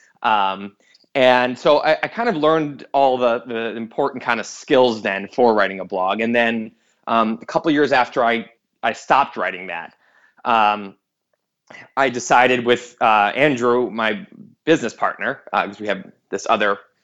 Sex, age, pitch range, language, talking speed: male, 20-39, 105-145 Hz, English, 170 wpm